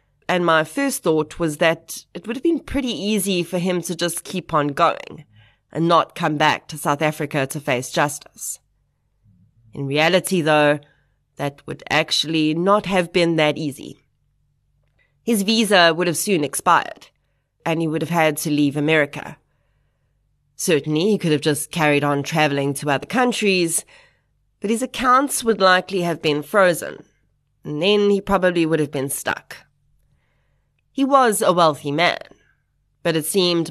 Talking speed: 160 wpm